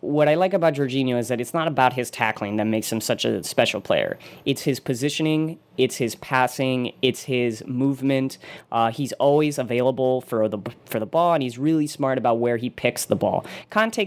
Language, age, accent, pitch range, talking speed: English, 20-39, American, 115-145 Hz, 205 wpm